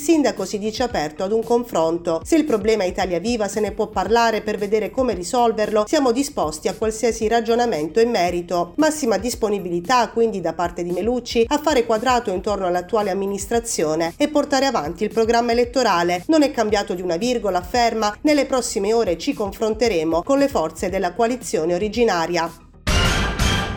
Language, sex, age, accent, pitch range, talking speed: Italian, female, 40-59, native, 185-235 Hz, 160 wpm